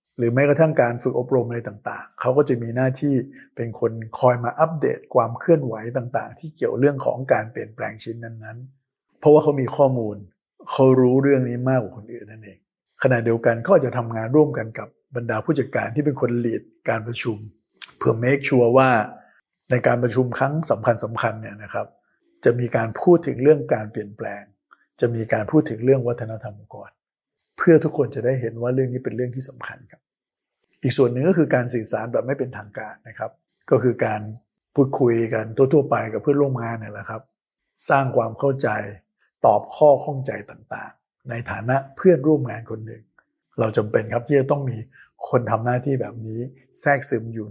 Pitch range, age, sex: 115-135 Hz, 60-79, male